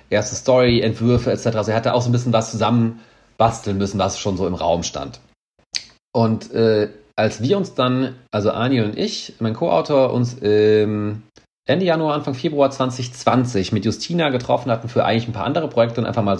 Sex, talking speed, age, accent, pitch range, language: male, 190 wpm, 40-59, German, 105-130 Hz, German